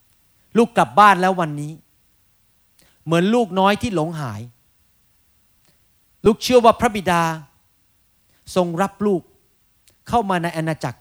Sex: male